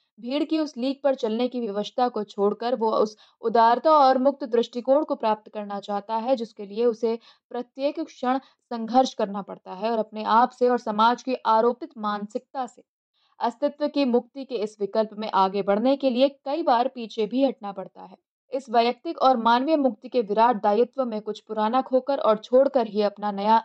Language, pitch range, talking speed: Hindi, 215-265 Hz, 150 wpm